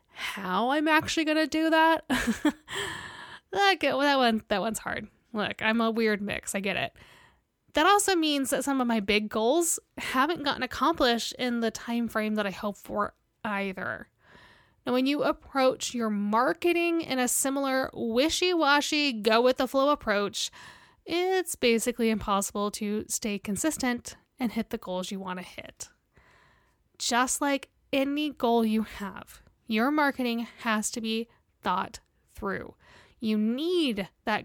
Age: 10-29